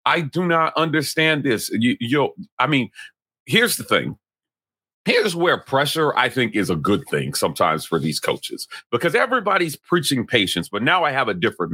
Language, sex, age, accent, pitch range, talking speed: English, male, 40-59, American, 140-205 Hz, 180 wpm